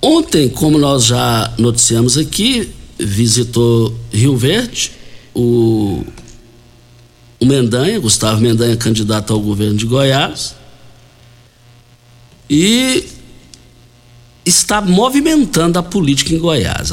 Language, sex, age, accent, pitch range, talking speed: Portuguese, male, 60-79, Brazilian, 120-150 Hz, 90 wpm